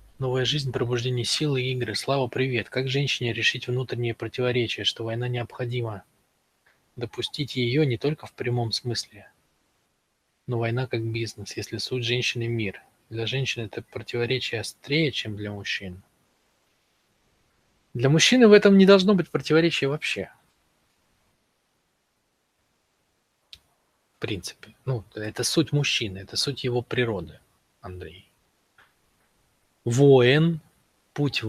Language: Russian